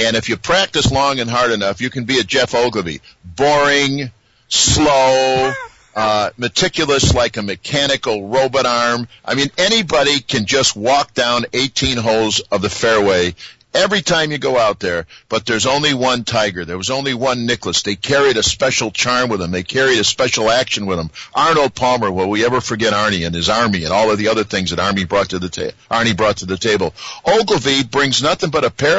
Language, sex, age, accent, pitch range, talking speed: English, male, 50-69, American, 110-150 Hz, 205 wpm